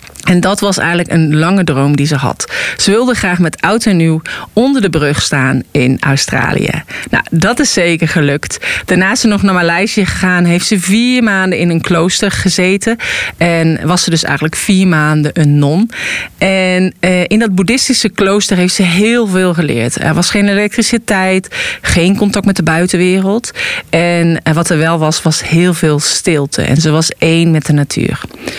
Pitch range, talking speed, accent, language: 165-210 Hz, 185 wpm, Dutch, Dutch